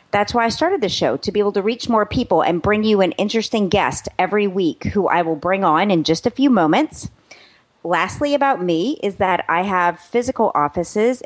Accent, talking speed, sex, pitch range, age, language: American, 215 wpm, female, 175-240 Hz, 30-49, English